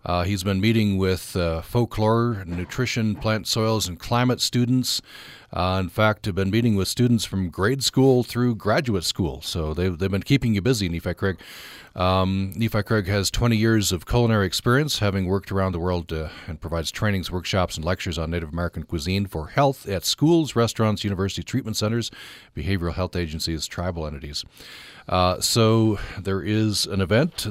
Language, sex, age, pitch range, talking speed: English, male, 40-59, 85-115 Hz, 175 wpm